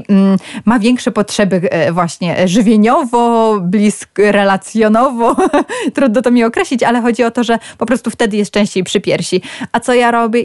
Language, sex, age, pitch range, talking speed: Polish, female, 20-39, 195-250 Hz, 155 wpm